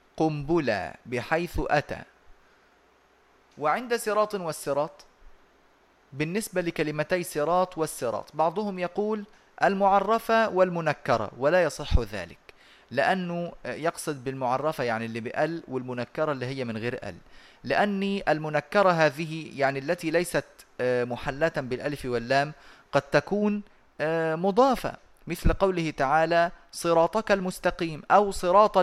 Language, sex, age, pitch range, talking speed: Arabic, male, 30-49, 130-180 Hz, 100 wpm